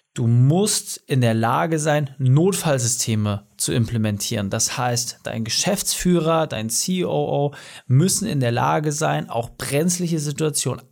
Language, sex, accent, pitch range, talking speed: German, male, German, 120-160 Hz, 125 wpm